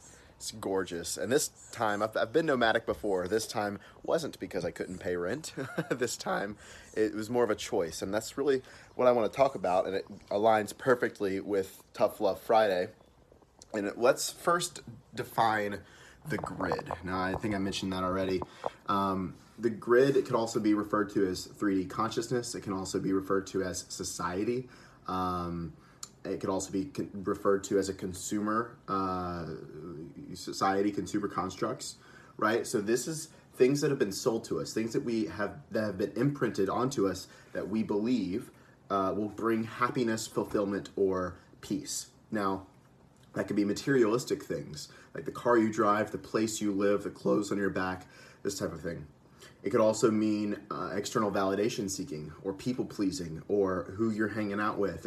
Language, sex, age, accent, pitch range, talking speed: English, male, 30-49, American, 95-110 Hz, 180 wpm